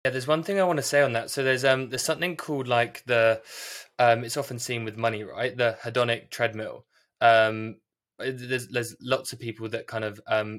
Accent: British